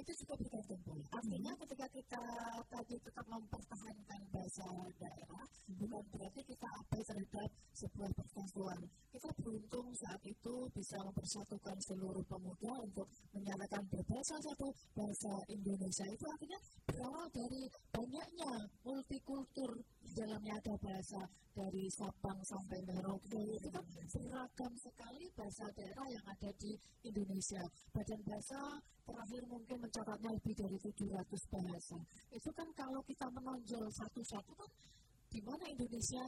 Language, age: Indonesian, 20-39